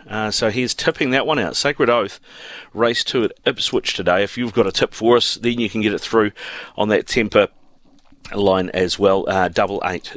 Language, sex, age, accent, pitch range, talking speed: English, male, 40-59, Australian, 95-115 Hz, 215 wpm